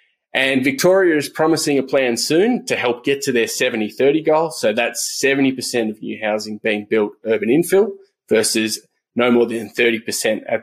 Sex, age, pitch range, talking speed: male, 20-39, 110-145 Hz, 170 wpm